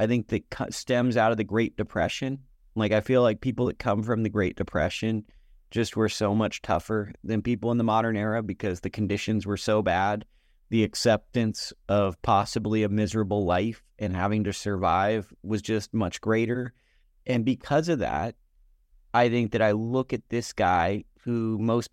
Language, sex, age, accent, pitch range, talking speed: English, male, 30-49, American, 105-125 Hz, 180 wpm